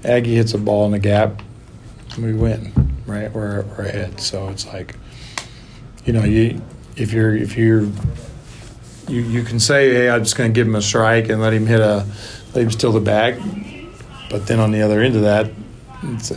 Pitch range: 105-115 Hz